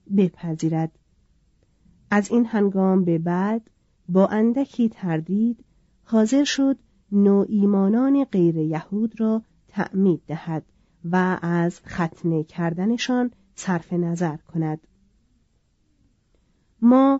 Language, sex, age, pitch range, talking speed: Persian, female, 40-59, 175-230 Hz, 85 wpm